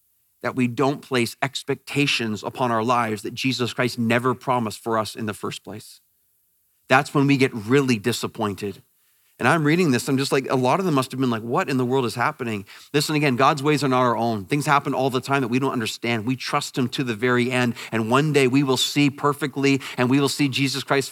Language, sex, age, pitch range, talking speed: English, male, 40-59, 125-155 Hz, 235 wpm